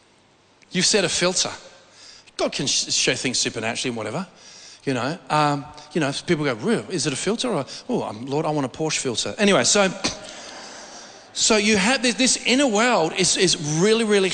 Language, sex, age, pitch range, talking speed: English, male, 40-59, 160-210 Hz, 185 wpm